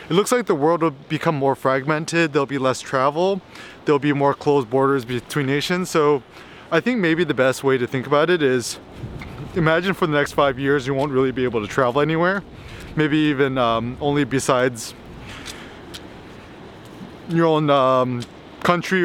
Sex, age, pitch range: male, 20-39, 130-170 Hz